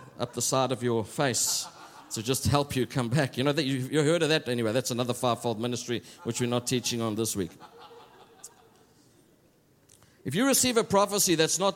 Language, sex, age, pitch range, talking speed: English, male, 60-79, 145-225 Hz, 190 wpm